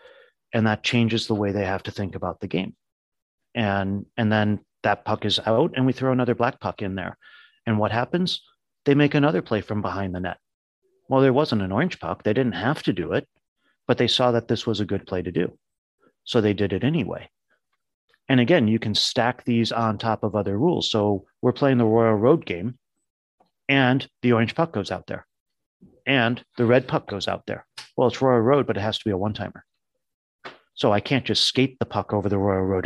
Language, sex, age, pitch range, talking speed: English, male, 40-59, 100-125 Hz, 220 wpm